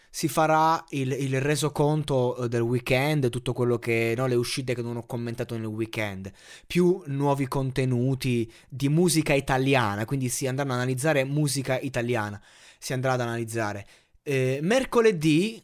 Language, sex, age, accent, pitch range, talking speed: Italian, male, 20-39, native, 125-170 Hz, 140 wpm